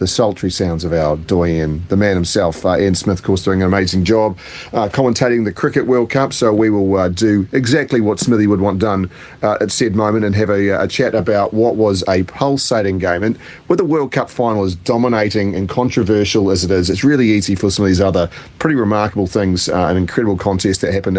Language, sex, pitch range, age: English, male, 95-120 Hz, 40-59